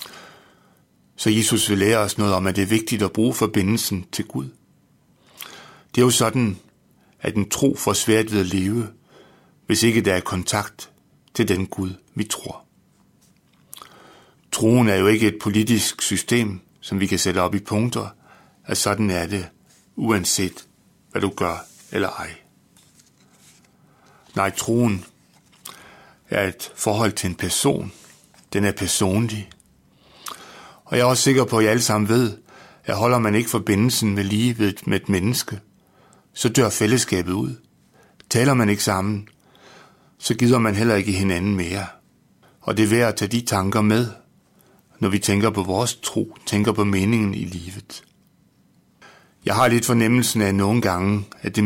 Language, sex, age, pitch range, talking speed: Danish, male, 60-79, 100-115 Hz, 160 wpm